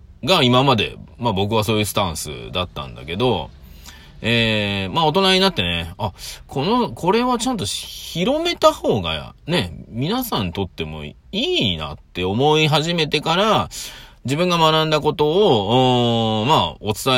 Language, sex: Japanese, male